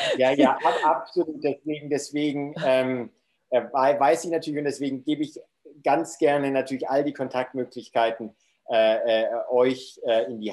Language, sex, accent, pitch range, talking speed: German, male, German, 120-150 Hz, 135 wpm